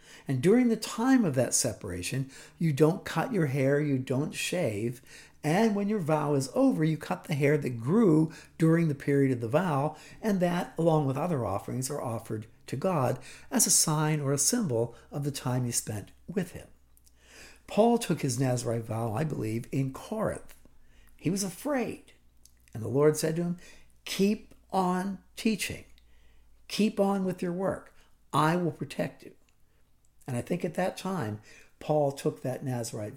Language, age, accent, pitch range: English, 60-79, American, 130-195 Hz